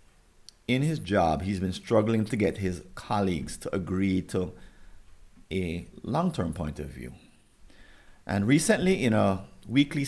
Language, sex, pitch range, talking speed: English, male, 90-115 Hz, 135 wpm